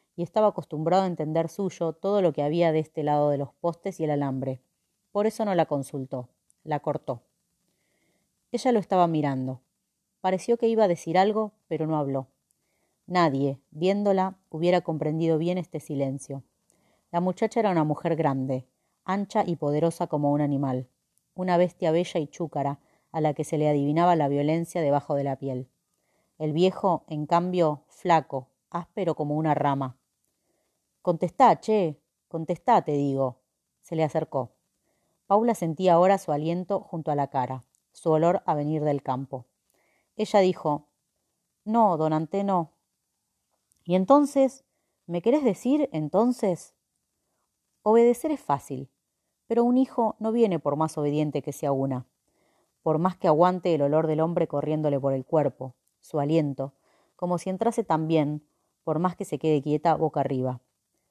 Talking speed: 155 wpm